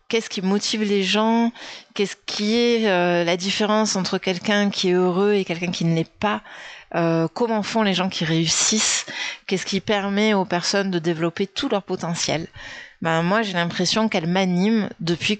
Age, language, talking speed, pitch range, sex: 30-49, French, 180 wpm, 175-220 Hz, female